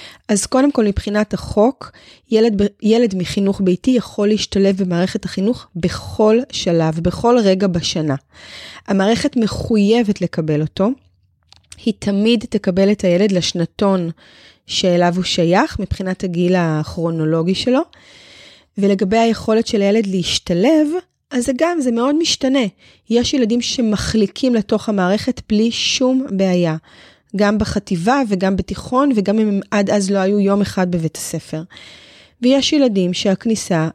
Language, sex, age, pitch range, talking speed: Hebrew, female, 20-39, 185-240 Hz, 125 wpm